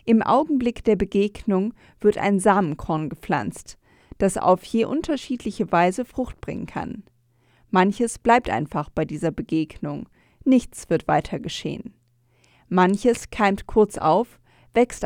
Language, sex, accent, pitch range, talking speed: German, female, German, 175-230 Hz, 125 wpm